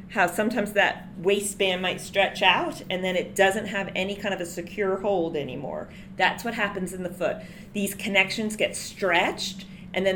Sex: female